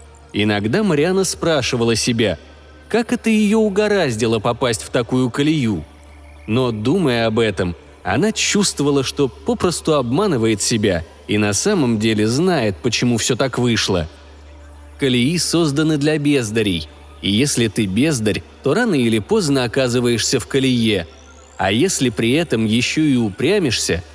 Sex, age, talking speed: male, 20-39, 130 wpm